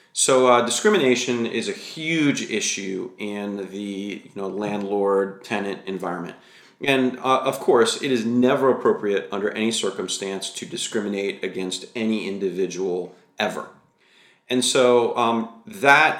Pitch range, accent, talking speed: 105-130 Hz, American, 120 wpm